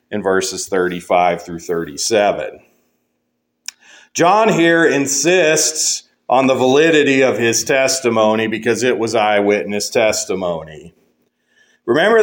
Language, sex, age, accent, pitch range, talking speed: English, male, 40-59, American, 110-155 Hz, 100 wpm